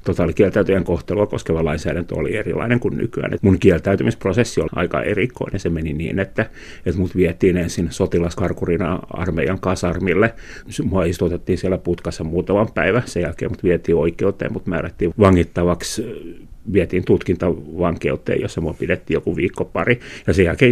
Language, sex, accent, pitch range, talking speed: Finnish, male, native, 85-100 Hz, 145 wpm